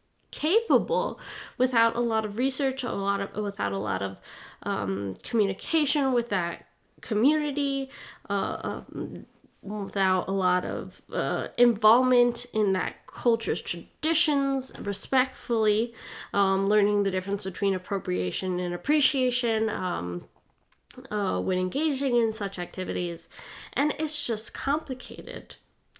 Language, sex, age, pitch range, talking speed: English, female, 10-29, 195-250 Hz, 115 wpm